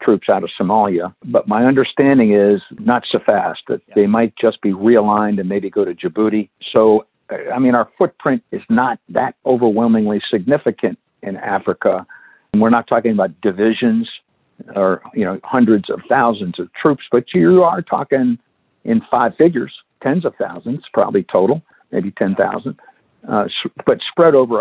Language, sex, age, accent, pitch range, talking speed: English, male, 60-79, American, 105-140 Hz, 160 wpm